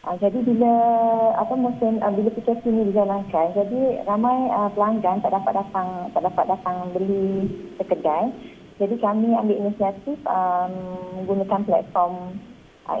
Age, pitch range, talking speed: 30-49, 185-225 Hz, 140 wpm